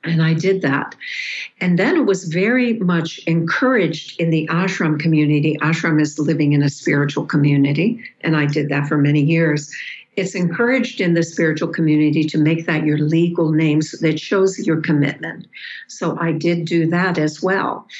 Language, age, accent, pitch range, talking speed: English, 60-79, American, 155-190 Hz, 175 wpm